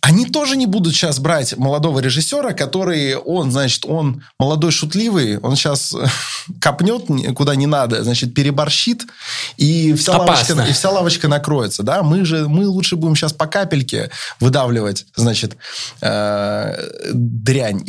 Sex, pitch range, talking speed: male, 120-165 Hz, 120 wpm